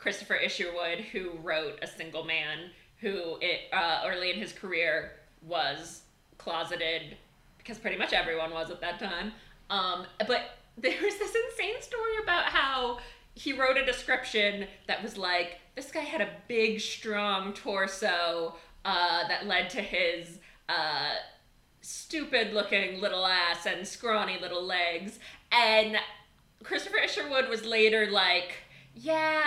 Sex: female